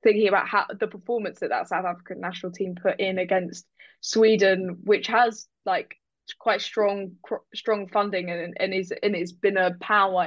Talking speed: 175 wpm